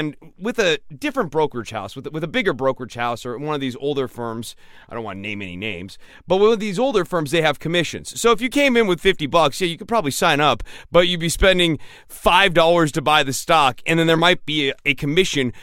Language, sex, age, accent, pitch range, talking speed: English, male, 30-49, American, 135-170 Hz, 245 wpm